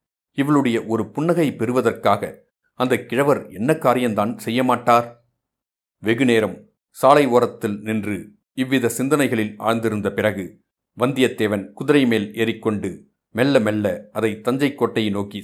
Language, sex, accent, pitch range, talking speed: Tamil, male, native, 105-125 Hz, 105 wpm